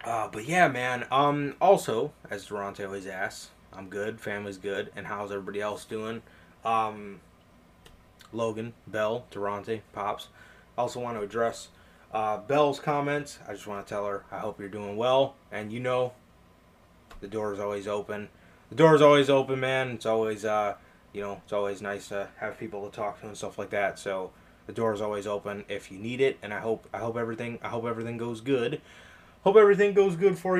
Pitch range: 100-130 Hz